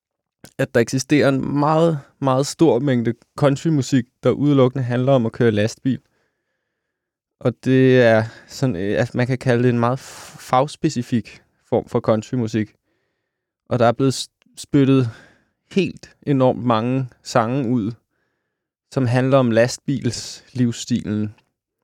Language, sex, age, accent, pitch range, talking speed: Danish, male, 20-39, native, 110-130 Hz, 125 wpm